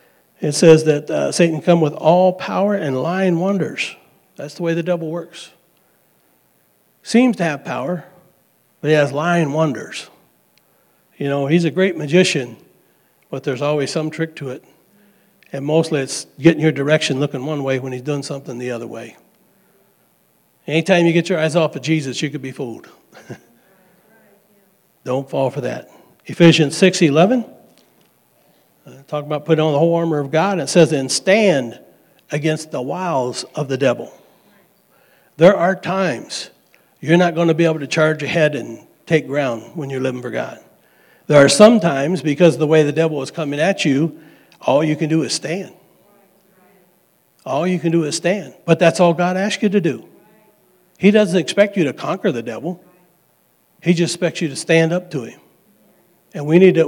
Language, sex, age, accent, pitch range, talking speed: English, male, 60-79, American, 145-180 Hz, 180 wpm